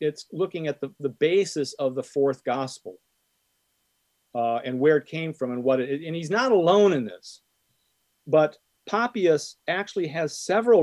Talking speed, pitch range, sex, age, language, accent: 170 wpm, 135-165 Hz, male, 40-59, English, American